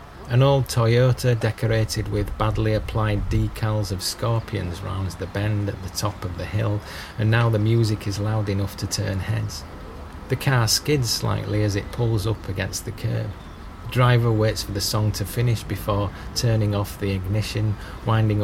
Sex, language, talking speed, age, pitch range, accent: male, English, 175 wpm, 30-49, 90-110 Hz, British